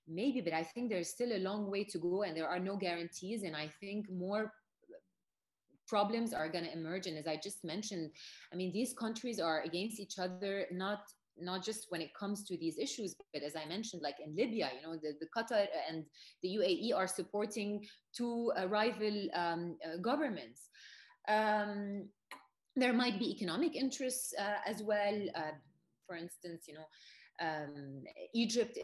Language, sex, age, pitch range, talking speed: English, female, 30-49, 170-230 Hz, 175 wpm